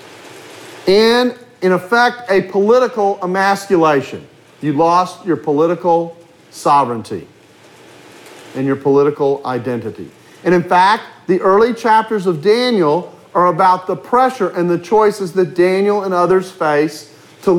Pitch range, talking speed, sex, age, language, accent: 180-240 Hz, 125 wpm, male, 40-59, English, American